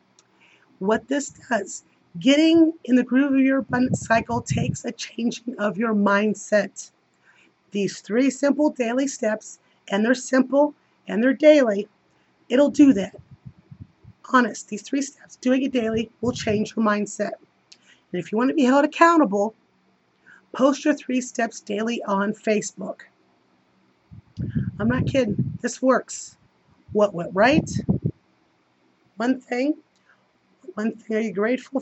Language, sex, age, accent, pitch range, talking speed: English, female, 30-49, American, 205-255 Hz, 135 wpm